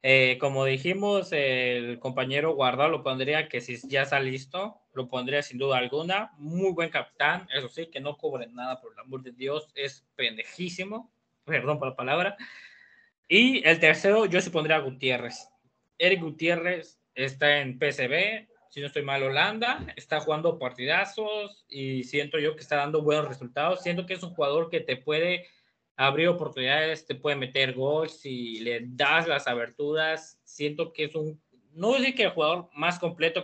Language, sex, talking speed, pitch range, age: Spanish, male, 175 wpm, 130-180 Hz, 20-39